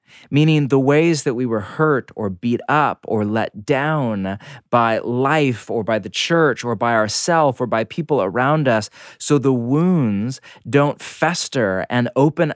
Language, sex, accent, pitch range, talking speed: English, male, American, 110-140 Hz, 160 wpm